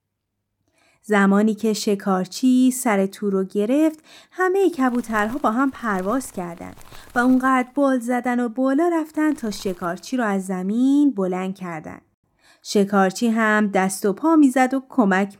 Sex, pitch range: female, 200-280 Hz